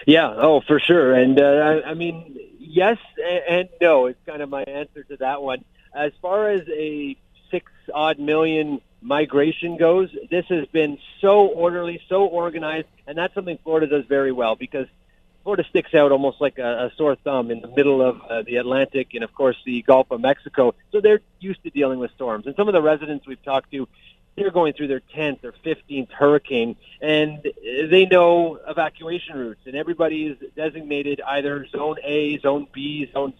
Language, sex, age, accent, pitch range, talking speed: English, male, 40-59, American, 135-165 Hz, 185 wpm